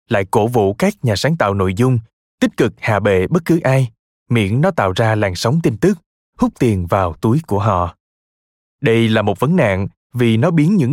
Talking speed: 215 wpm